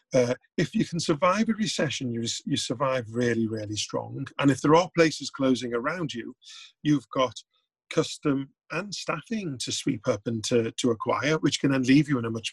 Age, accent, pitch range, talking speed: 40-59, British, 120-170 Hz, 195 wpm